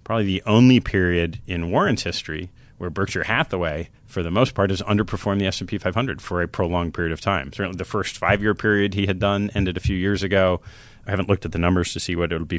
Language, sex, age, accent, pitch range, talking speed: English, male, 30-49, American, 90-110 Hz, 240 wpm